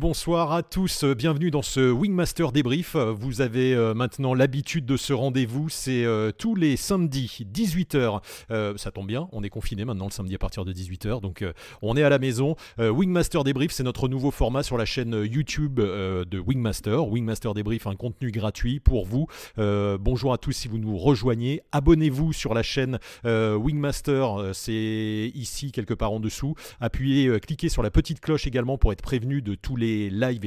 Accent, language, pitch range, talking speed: French, French, 110-140 Hz, 190 wpm